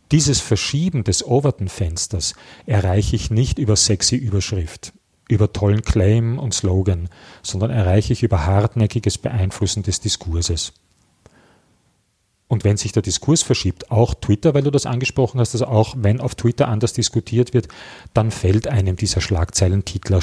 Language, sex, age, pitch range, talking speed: German, male, 40-59, 95-120 Hz, 145 wpm